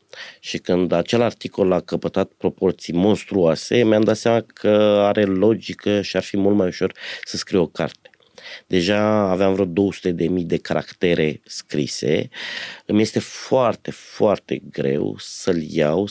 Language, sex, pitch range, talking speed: Romanian, male, 90-110 Hz, 140 wpm